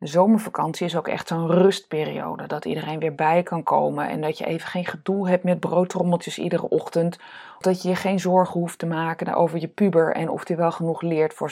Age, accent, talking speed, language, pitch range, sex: 20-39, Dutch, 220 wpm, Dutch, 165-200 Hz, female